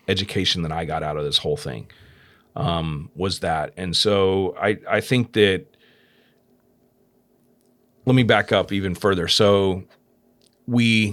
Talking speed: 140 wpm